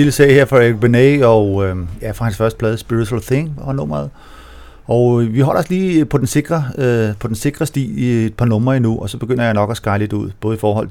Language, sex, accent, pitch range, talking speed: Danish, male, native, 95-120 Hz, 265 wpm